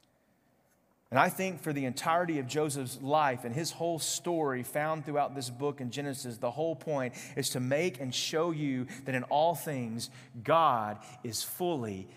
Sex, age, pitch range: male, 30-49, 125-160 Hz